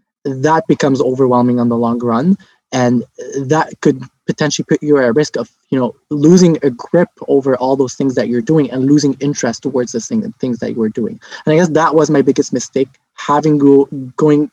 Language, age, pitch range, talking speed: English, 20-39, 135-165 Hz, 215 wpm